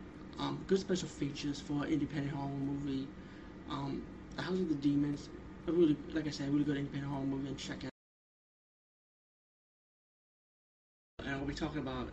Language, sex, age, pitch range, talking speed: English, male, 20-39, 130-160 Hz, 160 wpm